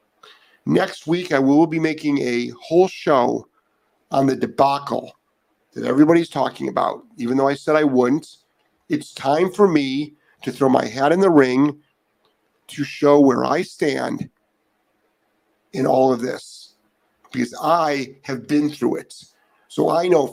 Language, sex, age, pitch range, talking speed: English, male, 50-69, 130-170 Hz, 150 wpm